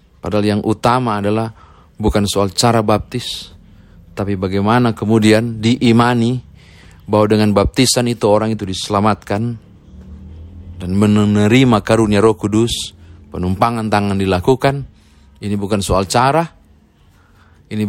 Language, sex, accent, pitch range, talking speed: Indonesian, male, native, 85-115 Hz, 105 wpm